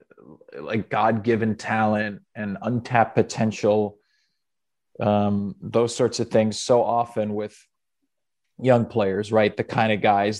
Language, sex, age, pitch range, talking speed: English, male, 30-49, 110-135 Hz, 120 wpm